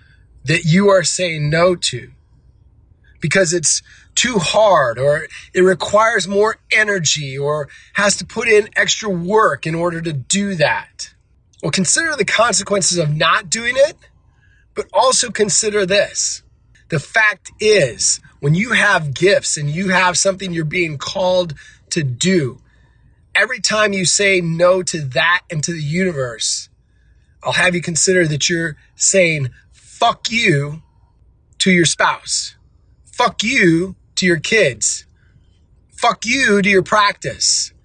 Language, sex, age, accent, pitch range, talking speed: English, male, 20-39, American, 140-200 Hz, 140 wpm